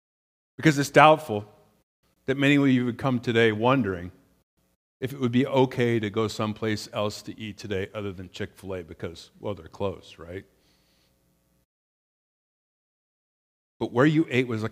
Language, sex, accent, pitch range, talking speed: English, male, American, 100-155 Hz, 150 wpm